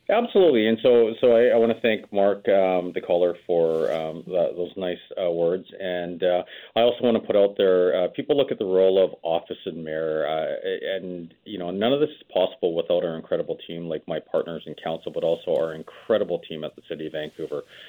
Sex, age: male, 40-59